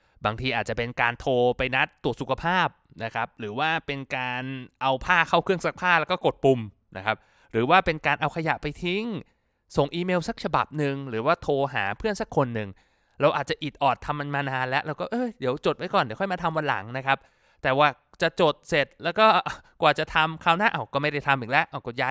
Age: 20-39